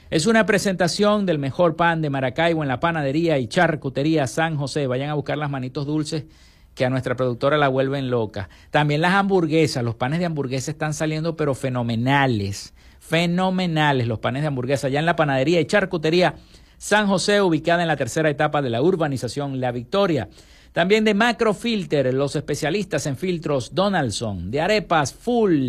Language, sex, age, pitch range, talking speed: Spanish, male, 50-69, 130-175 Hz, 170 wpm